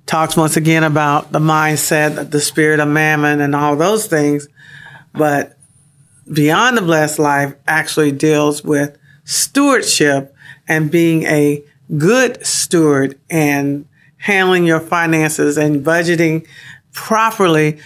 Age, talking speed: 50-69, 120 wpm